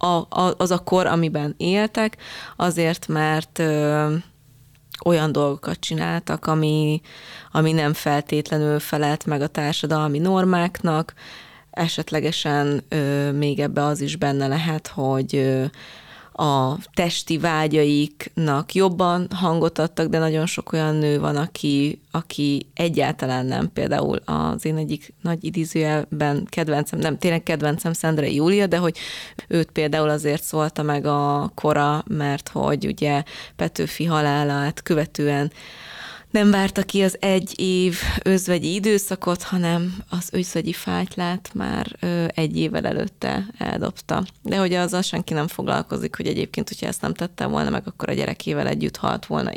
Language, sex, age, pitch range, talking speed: Hungarian, female, 20-39, 150-180 Hz, 130 wpm